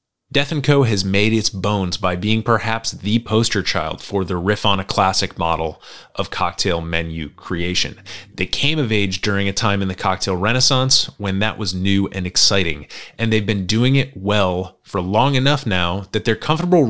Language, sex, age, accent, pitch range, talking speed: English, male, 30-49, American, 95-120 Hz, 190 wpm